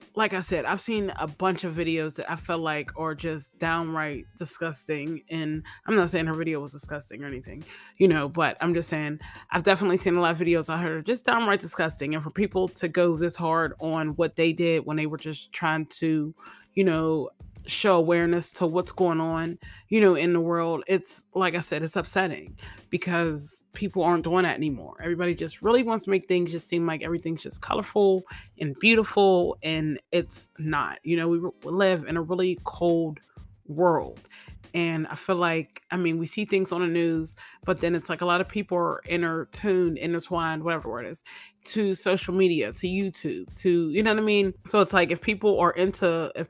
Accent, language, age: American, English, 20-39